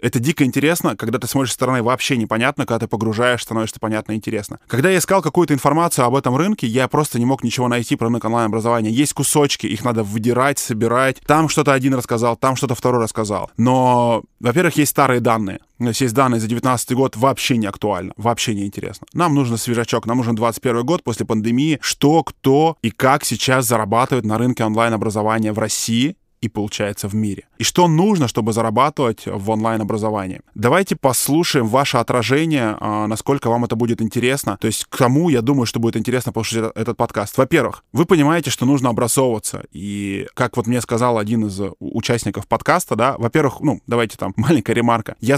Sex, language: male, Russian